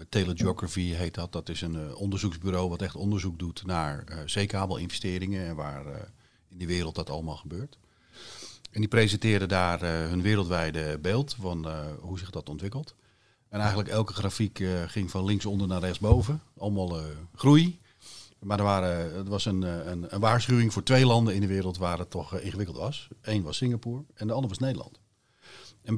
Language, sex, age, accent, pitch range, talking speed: English, male, 40-59, Dutch, 90-110 Hz, 185 wpm